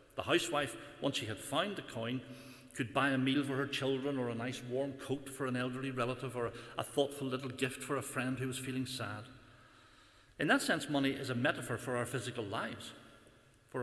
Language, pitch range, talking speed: English, 120-140 Hz, 210 wpm